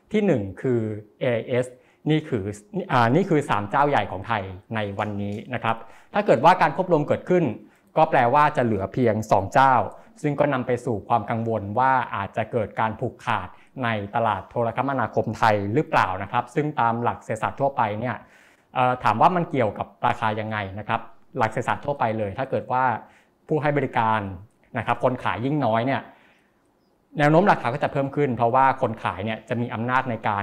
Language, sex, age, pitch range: Thai, male, 20-39, 110-135 Hz